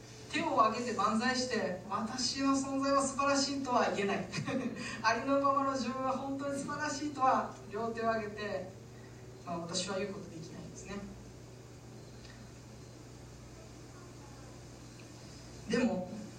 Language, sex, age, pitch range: Japanese, female, 40-59, 170-230 Hz